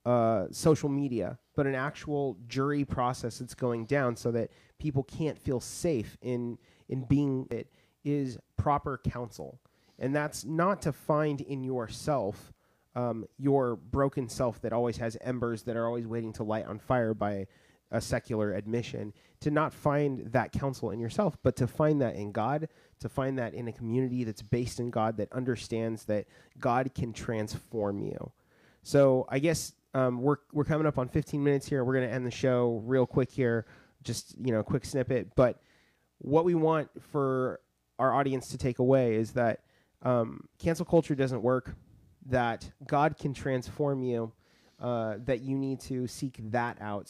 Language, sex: English, male